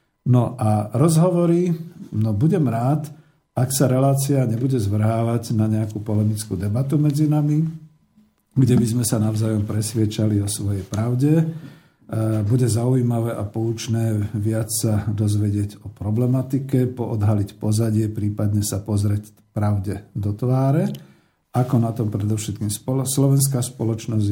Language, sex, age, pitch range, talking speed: Slovak, male, 50-69, 105-130 Hz, 125 wpm